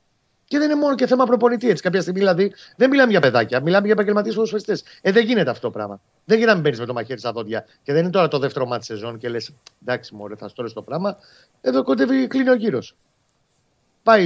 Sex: male